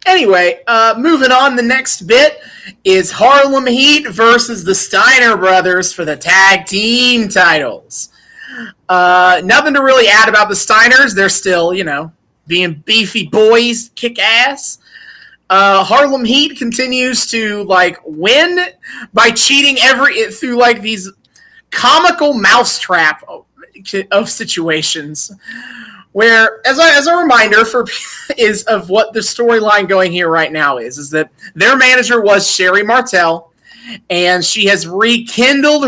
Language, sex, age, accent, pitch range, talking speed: English, male, 30-49, American, 195-255 Hz, 135 wpm